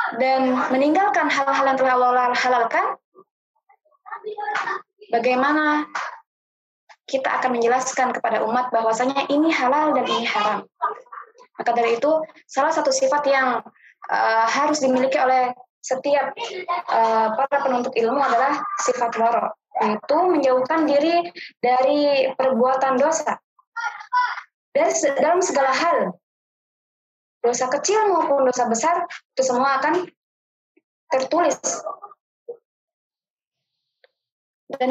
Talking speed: 95 wpm